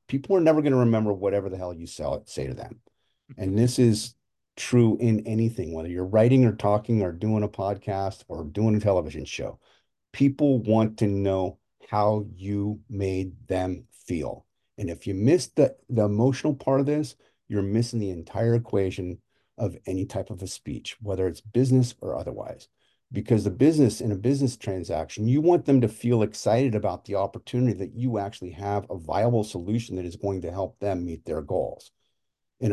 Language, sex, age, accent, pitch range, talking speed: English, male, 50-69, American, 100-120 Hz, 185 wpm